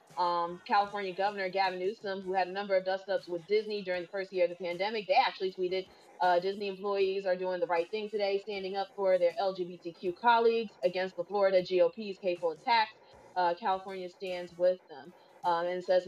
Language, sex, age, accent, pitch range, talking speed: English, female, 30-49, American, 180-205 Hz, 195 wpm